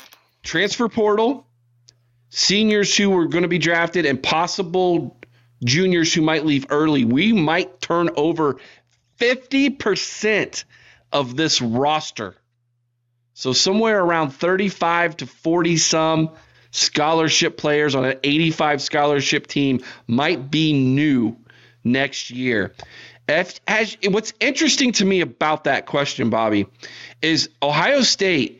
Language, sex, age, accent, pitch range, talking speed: English, male, 40-59, American, 125-185 Hz, 110 wpm